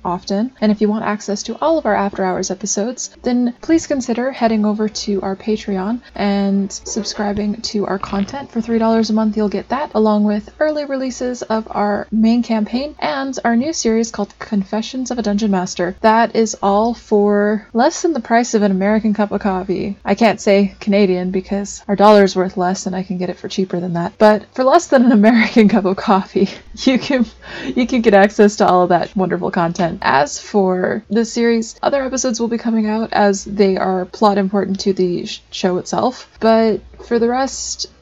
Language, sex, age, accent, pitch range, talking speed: English, female, 20-39, American, 195-230 Hz, 200 wpm